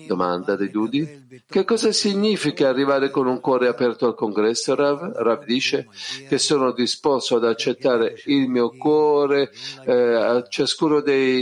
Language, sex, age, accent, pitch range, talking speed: Italian, male, 50-69, native, 125-150 Hz, 135 wpm